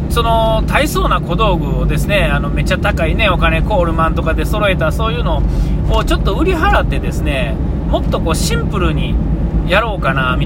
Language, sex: Japanese, male